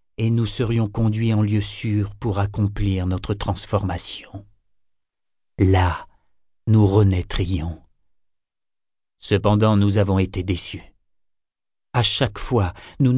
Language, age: French, 50-69